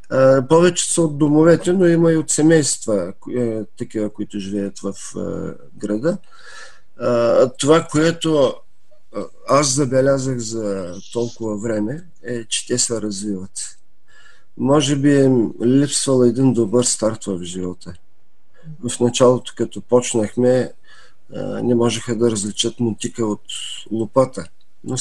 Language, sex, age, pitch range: Bulgarian, male, 50-69, 105-130 Hz